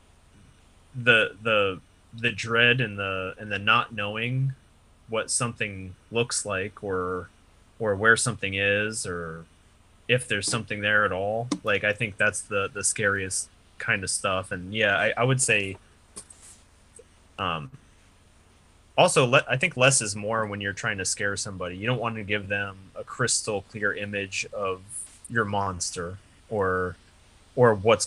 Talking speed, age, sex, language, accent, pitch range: 155 wpm, 20-39, male, English, American, 90-110 Hz